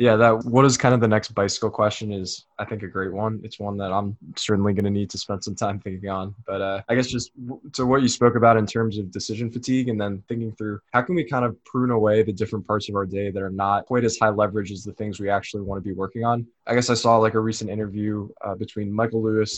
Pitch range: 100-115 Hz